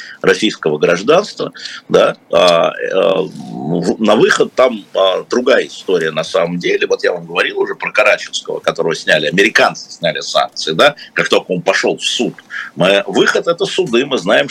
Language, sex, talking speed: Russian, male, 160 wpm